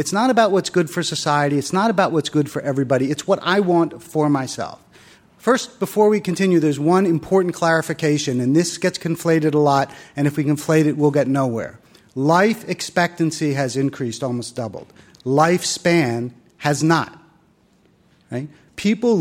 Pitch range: 150-185 Hz